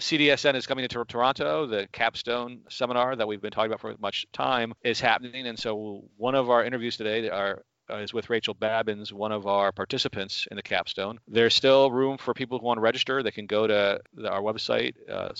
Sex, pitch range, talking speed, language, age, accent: male, 105-120 Hz, 210 wpm, English, 40-59, American